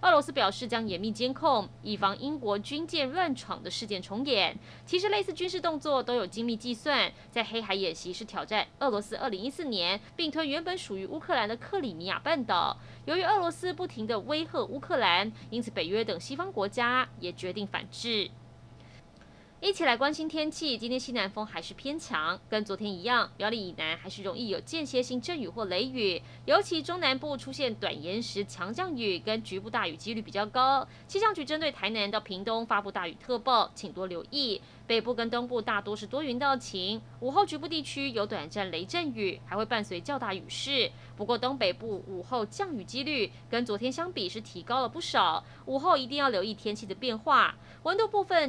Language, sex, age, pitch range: Chinese, female, 20-39, 205-300 Hz